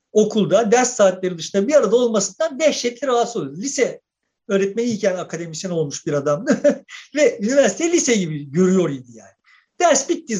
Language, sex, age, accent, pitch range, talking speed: Turkish, male, 50-69, native, 185-255 Hz, 140 wpm